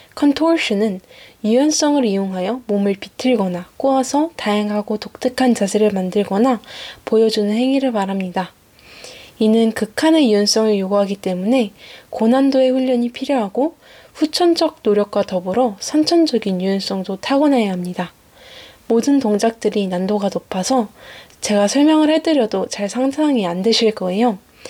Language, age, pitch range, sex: Korean, 10-29, 200-260 Hz, female